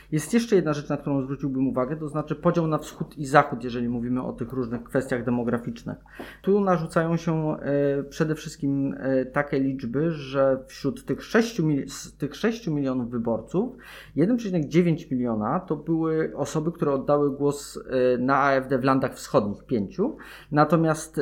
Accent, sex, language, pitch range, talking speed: native, male, Polish, 130-170 Hz, 155 wpm